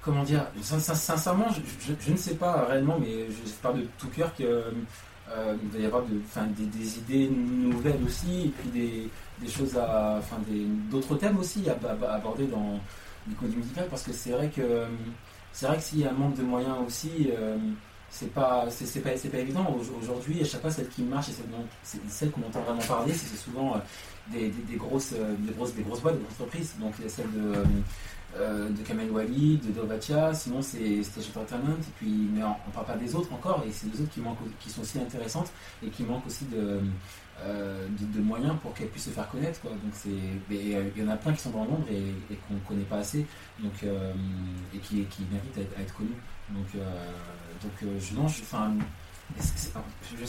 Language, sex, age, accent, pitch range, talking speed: French, male, 30-49, French, 105-135 Hz, 230 wpm